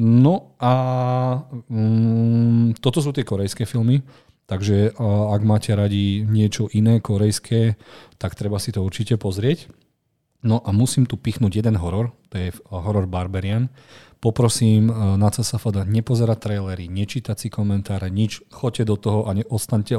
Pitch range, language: 105-120 Hz, Slovak